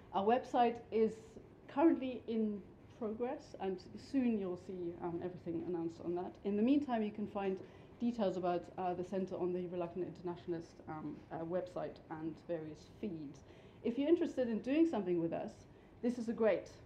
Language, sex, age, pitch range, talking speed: English, female, 30-49, 170-215 Hz, 170 wpm